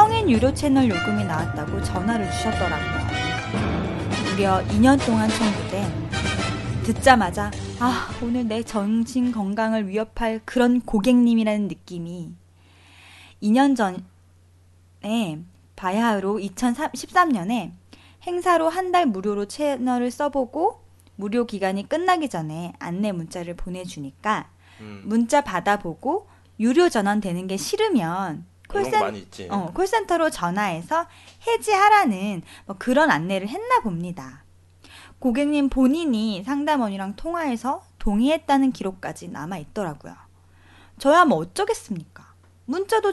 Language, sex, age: Korean, female, 20-39